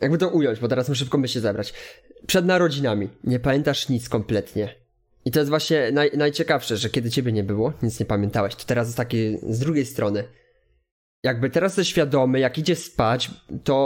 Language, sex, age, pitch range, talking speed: Polish, male, 20-39, 115-150 Hz, 195 wpm